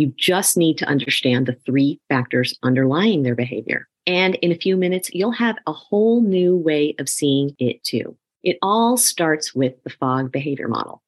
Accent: American